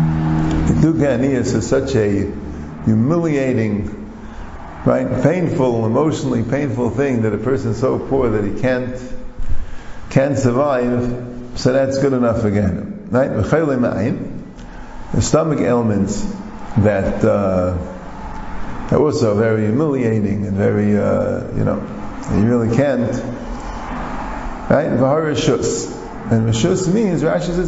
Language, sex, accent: English, male, American